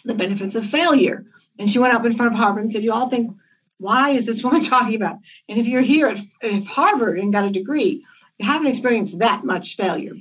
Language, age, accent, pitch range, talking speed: English, 60-79, American, 195-240 Hz, 235 wpm